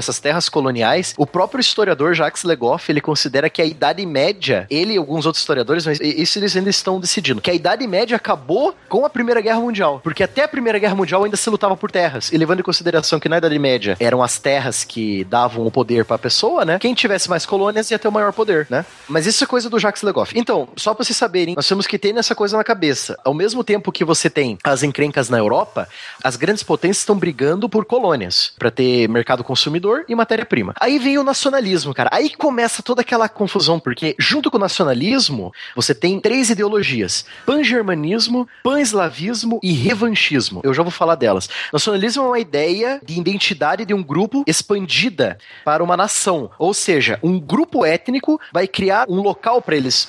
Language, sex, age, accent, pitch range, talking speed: Portuguese, male, 20-39, Brazilian, 150-225 Hz, 205 wpm